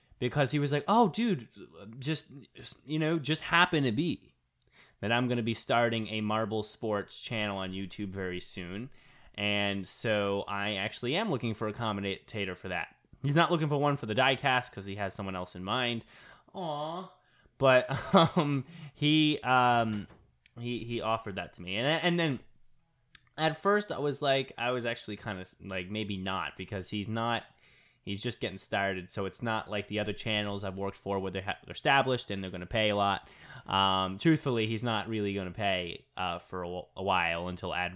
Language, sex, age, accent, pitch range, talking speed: English, male, 20-39, American, 100-145 Hz, 195 wpm